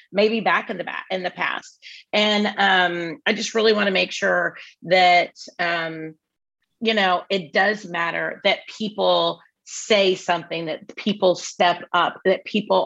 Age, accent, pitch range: 30-49, American, 180-220 Hz